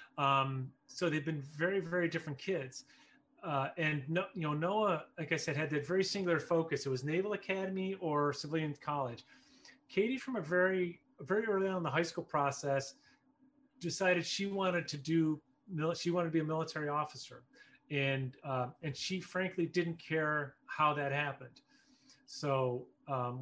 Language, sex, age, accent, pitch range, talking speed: English, male, 30-49, American, 140-175 Hz, 165 wpm